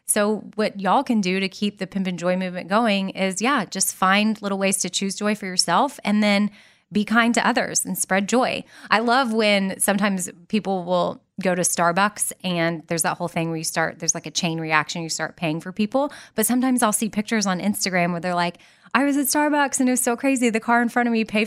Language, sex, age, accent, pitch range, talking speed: English, female, 20-39, American, 175-215 Hz, 245 wpm